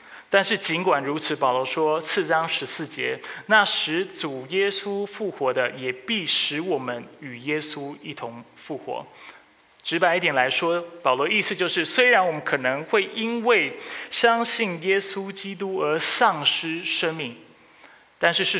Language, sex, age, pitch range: Chinese, male, 20-39, 140-200 Hz